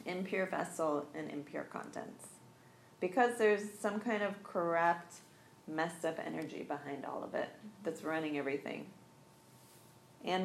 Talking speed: 125 wpm